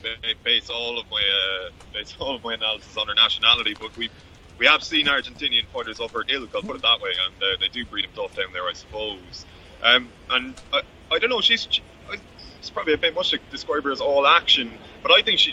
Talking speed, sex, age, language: 240 wpm, male, 20-39, English